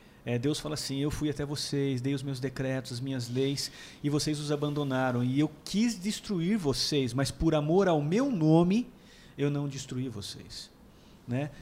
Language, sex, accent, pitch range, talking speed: Portuguese, male, Brazilian, 140-180 Hz, 180 wpm